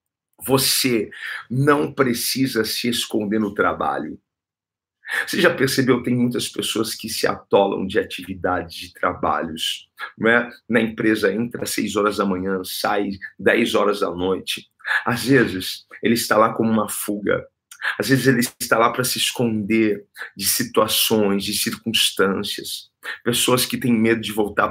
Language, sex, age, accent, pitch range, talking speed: Portuguese, male, 50-69, Brazilian, 105-130 Hz, 150 wpm